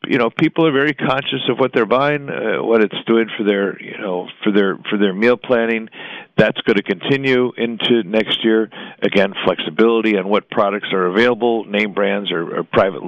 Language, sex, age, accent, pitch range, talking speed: English, male, 50-69, American, 105-135 Hz, 195 wpm